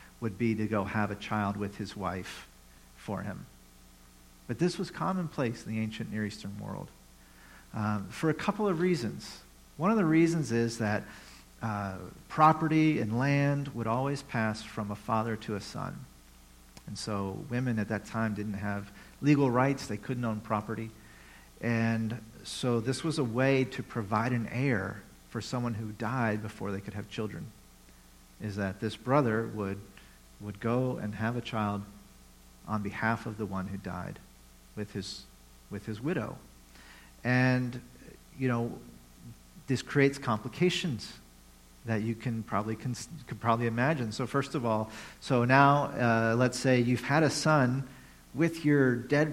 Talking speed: 160 wpm